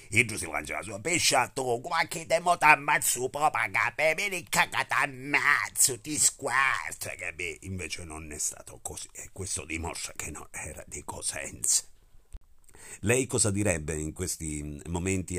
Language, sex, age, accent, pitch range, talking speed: Italian, male, 50-69, native, 75-100 Hz, 150 wpm